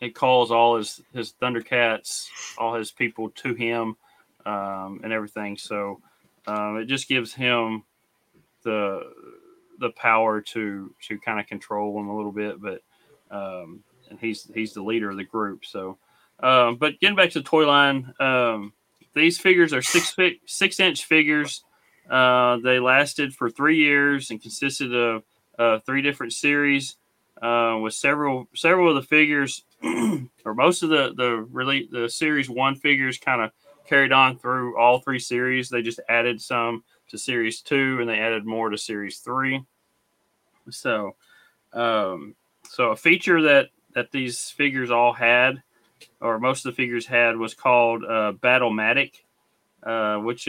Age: 30-49